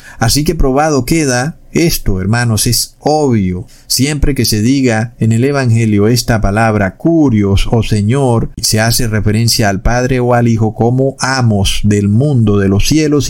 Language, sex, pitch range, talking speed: Spanish, male, 115-145 Hz, 165 wpm